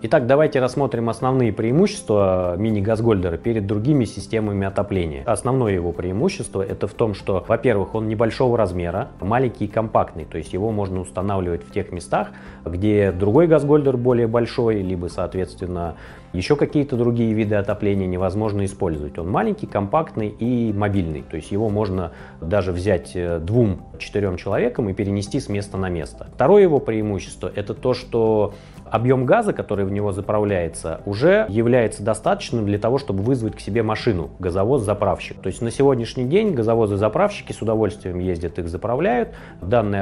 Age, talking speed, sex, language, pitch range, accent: 30-49, 150 wpm, male, Russian, 95-125 Hz, native